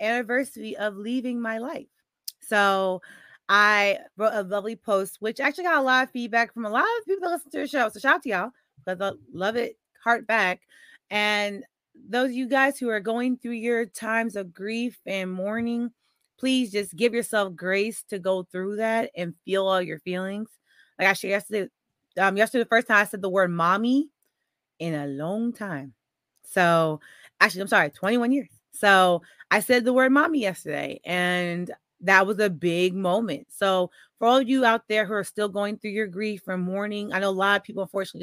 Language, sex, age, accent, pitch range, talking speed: English, female, 30-49, American, 180-230 Hz, 200 wpm